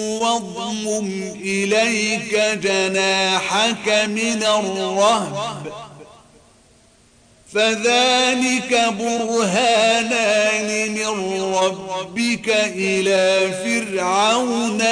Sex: male